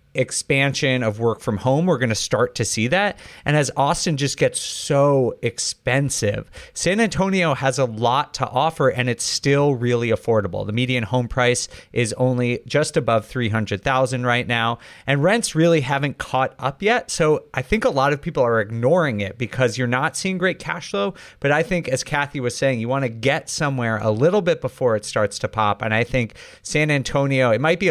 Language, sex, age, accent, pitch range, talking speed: English, male, 30-49, American, 115-145 Hz, 200 wpm